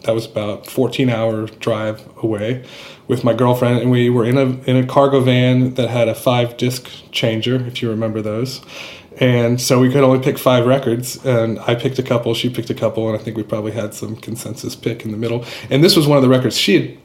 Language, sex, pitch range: English, male, 110-130 Hz